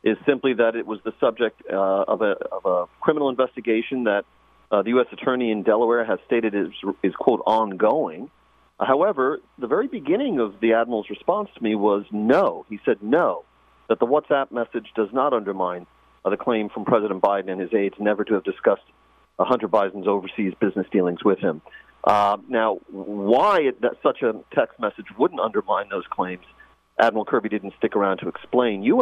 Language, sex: English, male